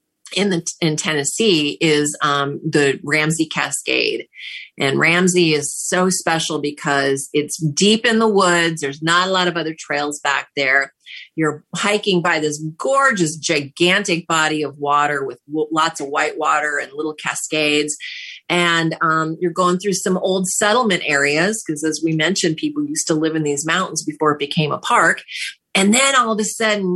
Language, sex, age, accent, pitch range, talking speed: English, female, 30-49, American, 155-185 Hz, 170 wpm